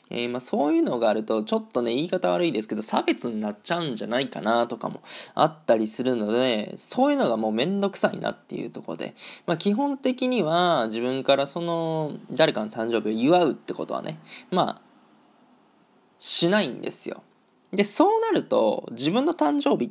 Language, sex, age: Japanese, male, 20-39